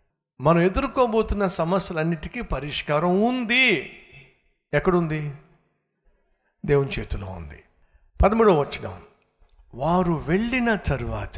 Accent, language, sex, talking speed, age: native, Telugu, male, 75 wpm, 60-79